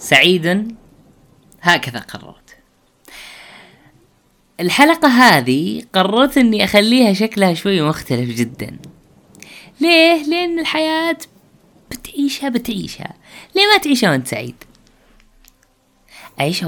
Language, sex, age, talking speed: Arabic, female, 20-39, 85 wpm